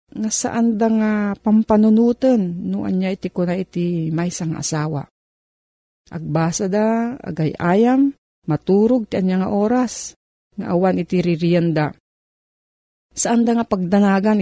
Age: 40-59